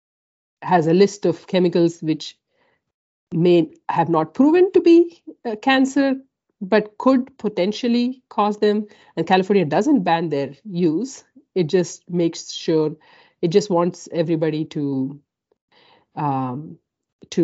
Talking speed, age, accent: 125 wpm, 50-69, Indian